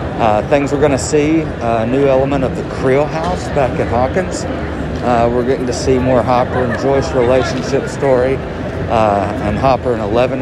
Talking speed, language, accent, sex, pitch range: 185 wpm, English, American, male, 105-130 Hz